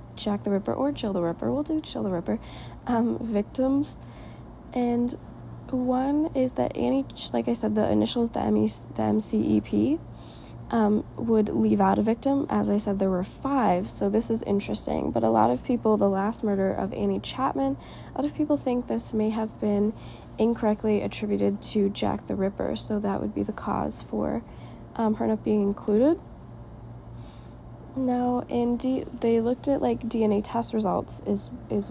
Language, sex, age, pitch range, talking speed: English, female, 20-39, 185-235 Hz, 175 wpm